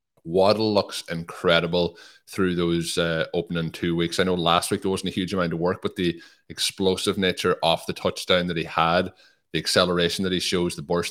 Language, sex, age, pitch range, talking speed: English, male, 20-39, 85-95 Hz, 200 wpm